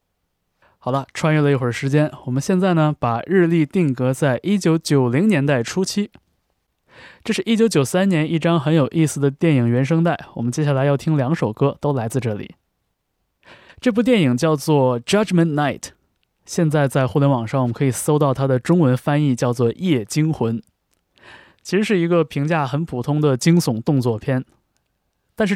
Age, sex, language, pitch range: 20-39, male, Chinese, 125-165 Hz